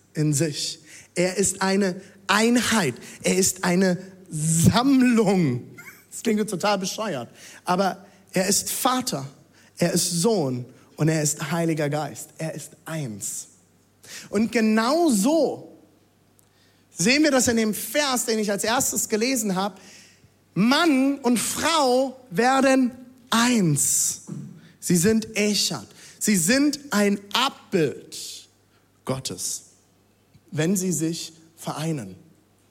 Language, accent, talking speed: German, German, 110 wpm